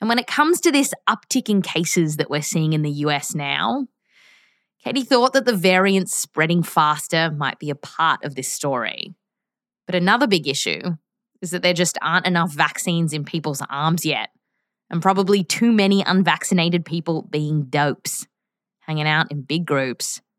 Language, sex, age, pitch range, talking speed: English, female, 20-39, 160-220 Hz, 170 wpm